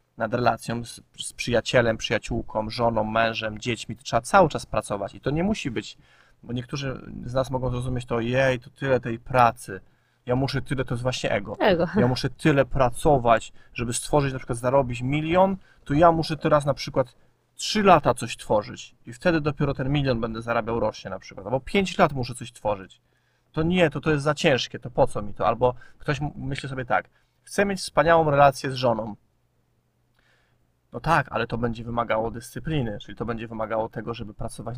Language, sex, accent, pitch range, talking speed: Polish, male, native, 115-135 Hz, 190 wpm